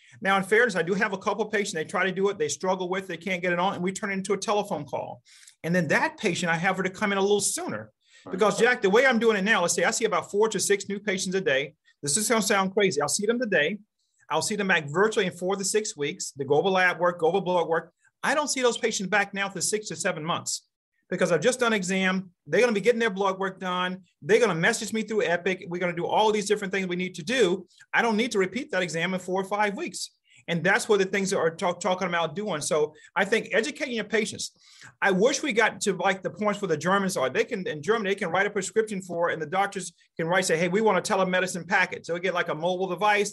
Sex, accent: male, American